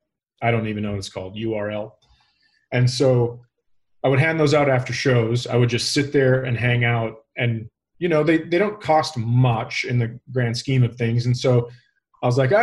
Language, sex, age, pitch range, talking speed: English, male, 30-49, 120-145 Hz, 215 wpm